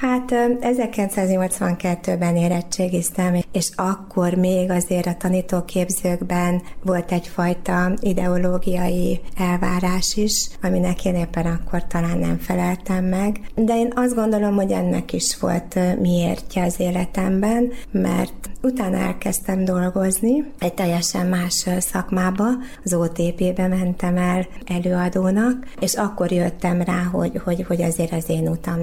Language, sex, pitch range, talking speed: Hungarian, female, 175-195 Hz, 120 wpm